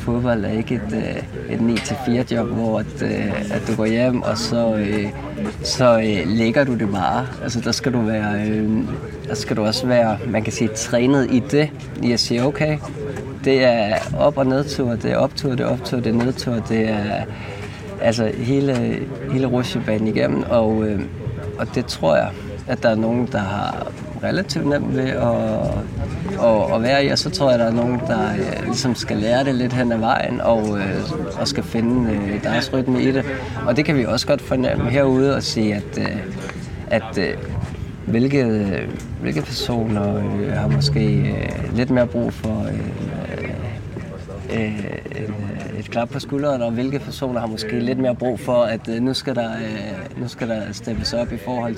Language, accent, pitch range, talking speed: Danish, native, 110-125 Hz, 180 wpm